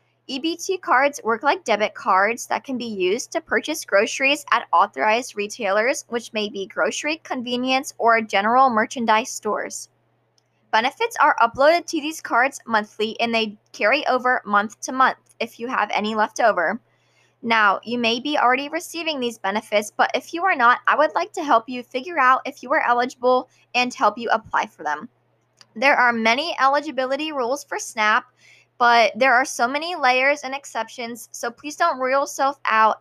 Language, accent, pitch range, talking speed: English, American, 225-280 Hz, 175 wpm